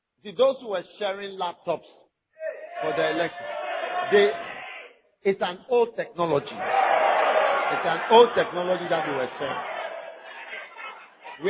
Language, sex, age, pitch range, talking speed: English, male, 50-69, 175-230 Hz, 120 wpm